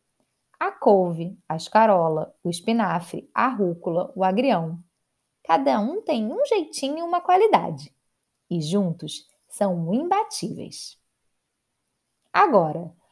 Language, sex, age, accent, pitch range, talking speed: Portuguese, female, 20-39, Brazilian, 175-275 Hz, 105 wpm